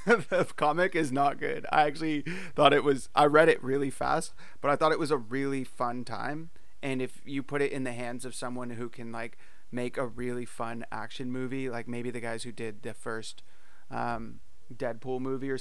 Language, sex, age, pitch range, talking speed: English, male, 30-49, 115-135 Hz, 210 wpm